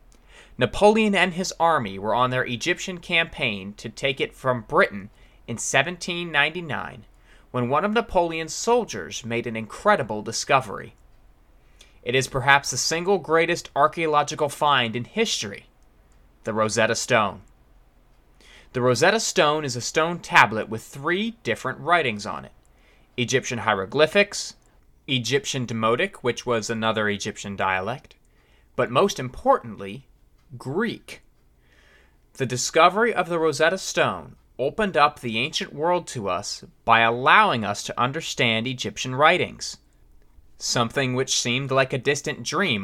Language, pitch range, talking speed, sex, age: English, 110-165 Hz, 125 wpm, male, 20-39